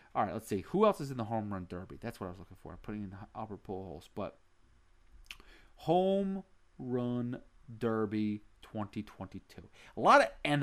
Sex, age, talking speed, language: male, 30-49, 160 wpm, English